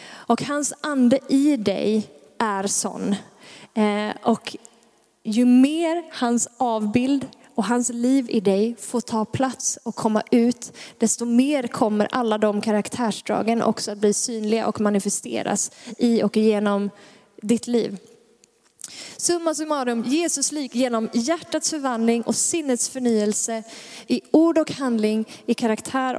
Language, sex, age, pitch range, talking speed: Swedish, female, 20-39, 225-275 Hz, 130 wpm